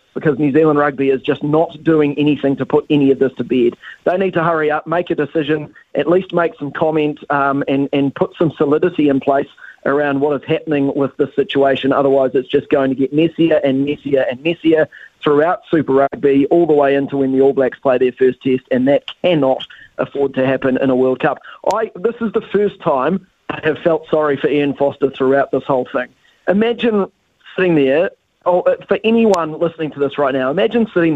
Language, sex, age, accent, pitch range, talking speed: English, male, 40-59, Australian, 140-170 Hz, 210 wpm